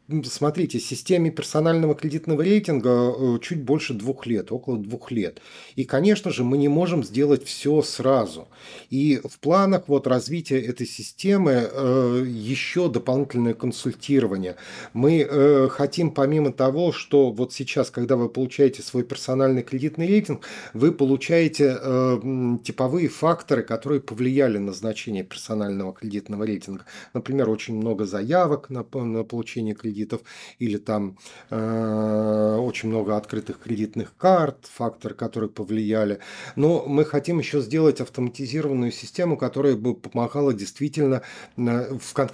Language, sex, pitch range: Russian, male, 115-145 Hz